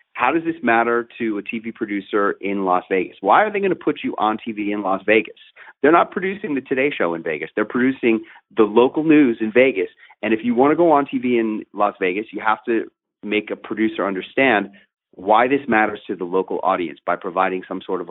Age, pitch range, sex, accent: 30-49, 105-135 Hz, male, American